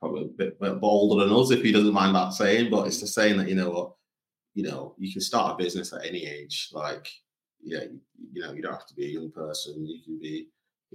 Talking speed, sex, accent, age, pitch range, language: 265 wpm, male, British, 20-39, 95-125 Hz, English